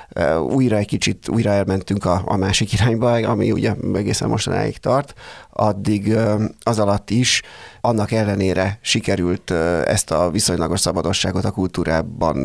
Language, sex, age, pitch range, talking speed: Hungarian, male, 30-49, 95-110 Hz, 130 wpm